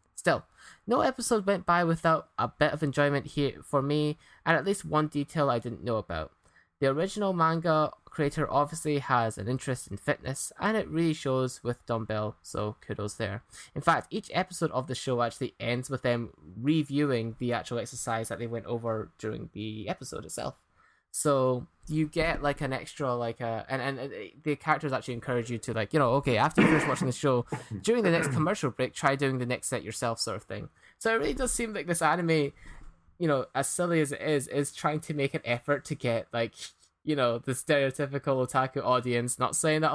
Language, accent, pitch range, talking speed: English, British, 120-150 Hz, 205 wpm